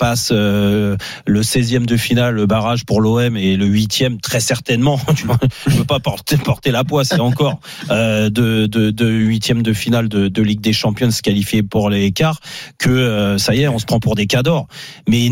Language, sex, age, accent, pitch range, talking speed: French, male, 30-49, French, 110-135 Hz, 225 wpm